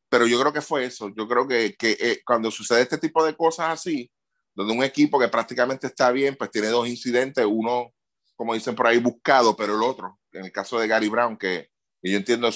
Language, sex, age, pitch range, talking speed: Spanish, male, 30-49, 110-140 Hz, 225 wpm